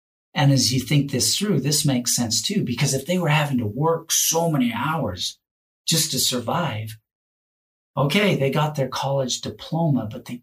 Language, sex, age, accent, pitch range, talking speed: English, male, 40-59, American, 110-140 Hz, 180 wpm